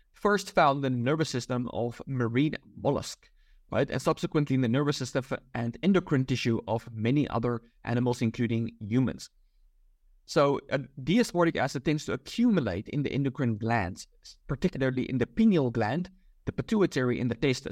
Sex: male